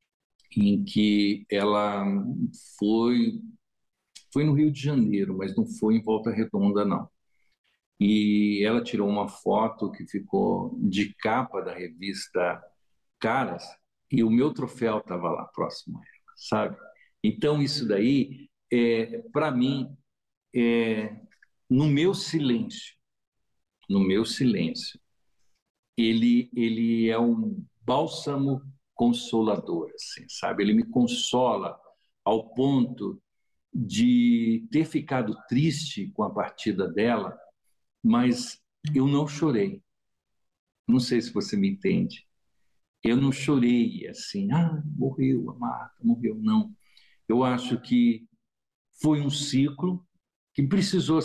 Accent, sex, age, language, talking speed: Brazilian, male, 60-79, English, 110 wpm